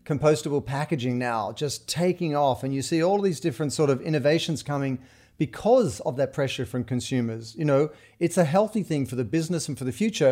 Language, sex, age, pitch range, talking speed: English, male, 40-59, 135-170 Hz, 205 wpm